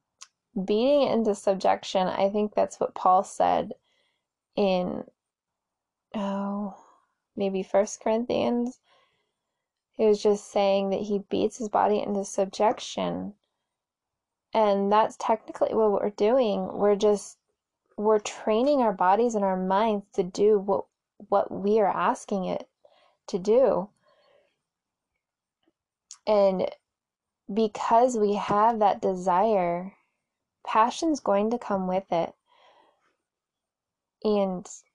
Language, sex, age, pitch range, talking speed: English, female, 20-39, 195-225 Hz, 110 wpm